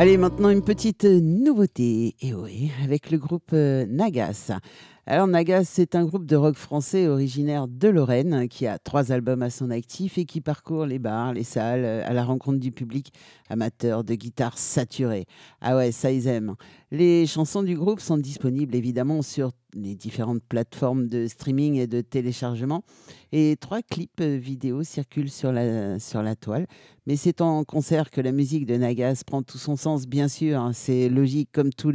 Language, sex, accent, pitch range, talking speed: French, male, French, 125-155 Hz, 180 wpm